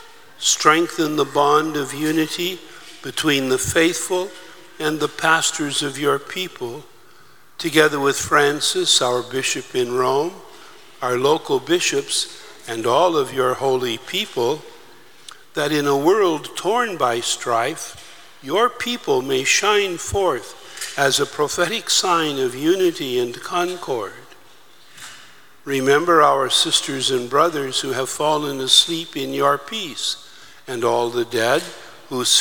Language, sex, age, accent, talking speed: English, male, 60-79, American, 125 wpm